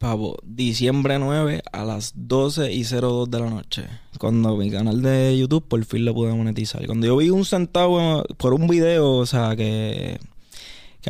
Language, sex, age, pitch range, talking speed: Spanish, male, 20-39, 115-145 Hz, 180 wpm